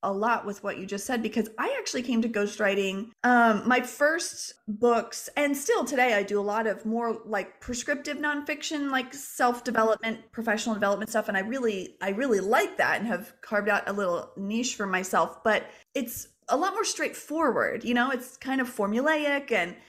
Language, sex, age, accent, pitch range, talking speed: English, female, 30-49, American, 210-265 Hz, 190 wpm